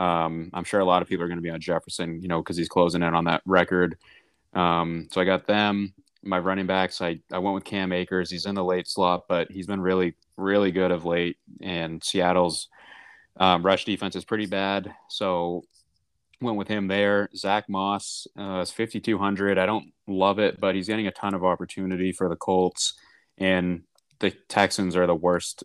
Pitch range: 85-95 Hz